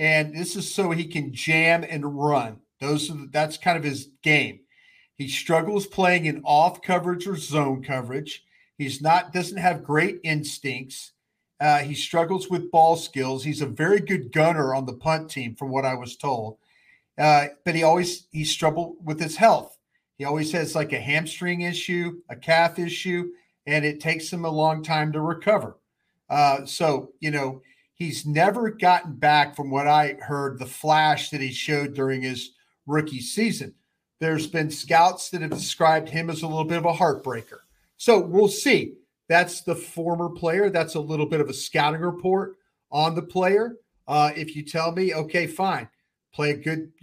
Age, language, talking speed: 40-59, English, 180 wpm